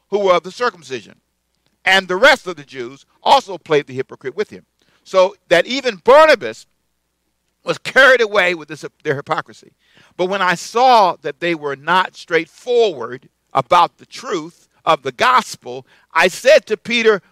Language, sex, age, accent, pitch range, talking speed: English, male, 50-69, American, 130-195 Hz, 160 wpm